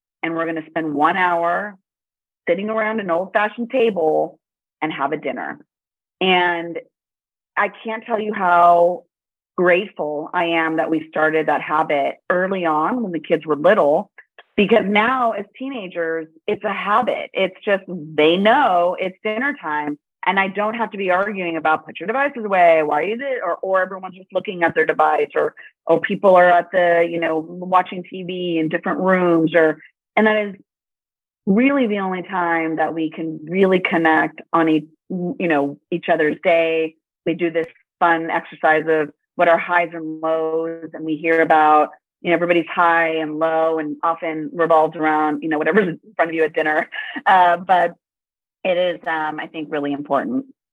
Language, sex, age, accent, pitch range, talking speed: English, female, 30-49, American, 160-195 Hz, 175 wpm